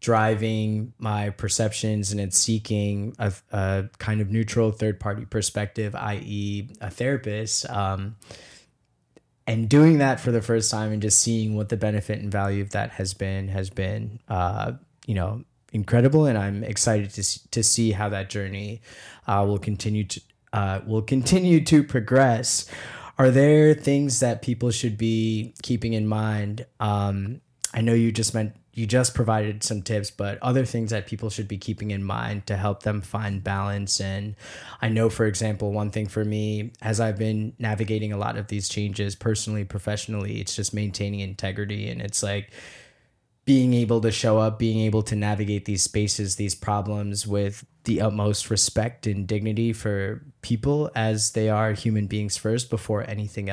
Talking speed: 170 wpm